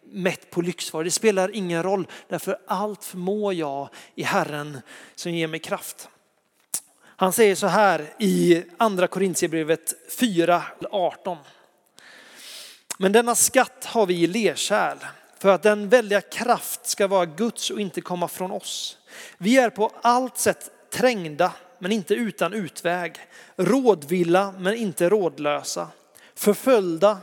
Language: Swedish